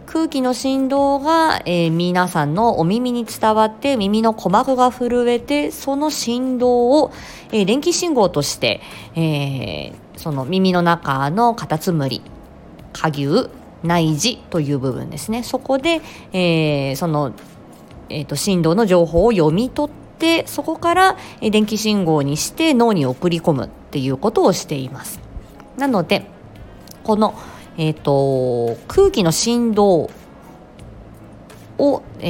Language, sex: Japanese, female